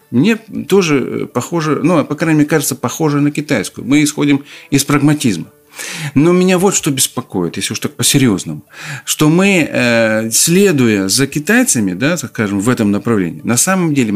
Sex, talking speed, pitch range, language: male, 155 wpm, 125-155 Hz, Russian